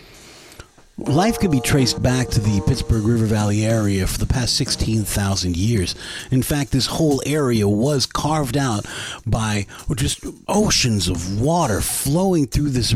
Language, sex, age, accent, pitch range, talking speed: English, male, 30-49, American, 110-150 Hz, 150 wpm